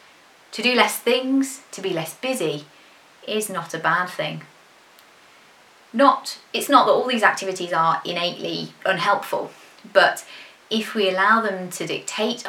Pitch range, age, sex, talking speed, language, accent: 180-220 Hz, 30-49, female, 140 wpm, English, British